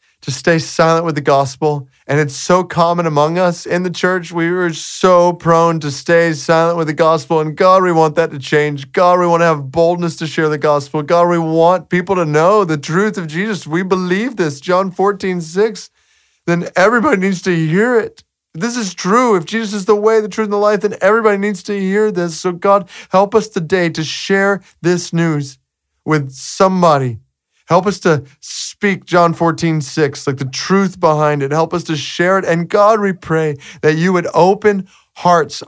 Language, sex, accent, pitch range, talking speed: English, male, American, 140-180 Hz, 200 wpm